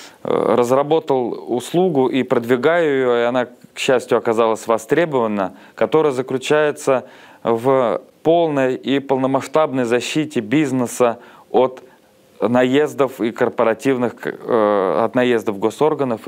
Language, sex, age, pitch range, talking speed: Russian, male, 20-39, 120-150 Hz, 90 wpm